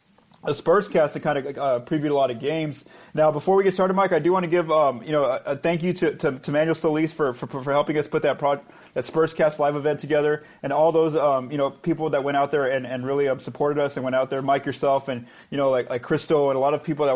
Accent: American